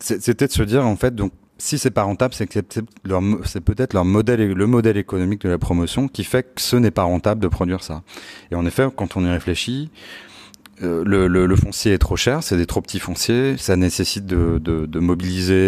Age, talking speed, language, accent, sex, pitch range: 30-49, 230 wpm, French, French, male, 85-105 Hz